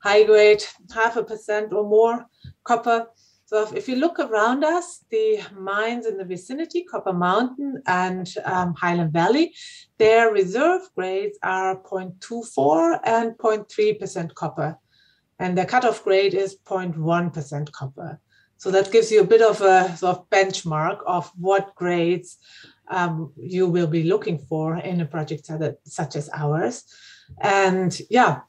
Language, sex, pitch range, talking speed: English, female, 175-225 Hz, 145 wpm